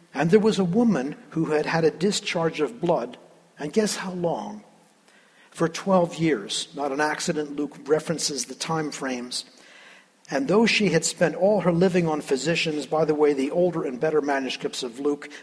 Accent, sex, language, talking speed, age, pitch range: American, male, English, 185 wpm, 50-69, 145-190 Hz